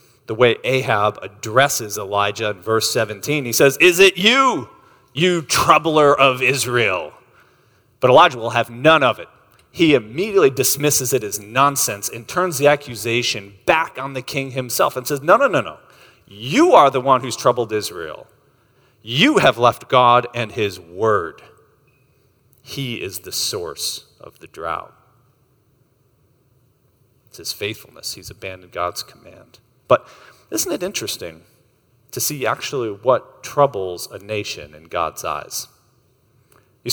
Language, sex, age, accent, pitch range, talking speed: English, male, 40-59, American, 120-140 Hz, 145 wpm